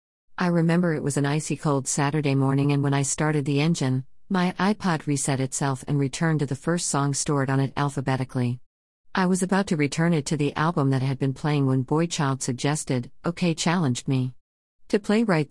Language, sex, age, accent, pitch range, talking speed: English, female, 50-69, American, 130-165 Hz, 205 wpm